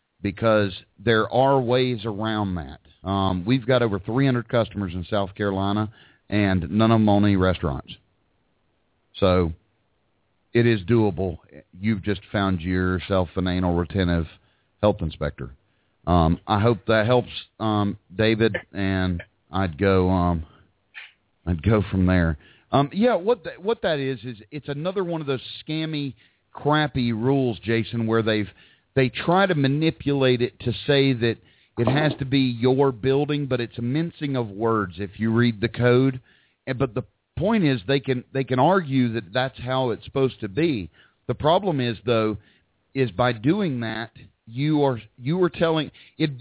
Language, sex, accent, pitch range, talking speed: English, male, American, 100-135 Hz, 165 wpm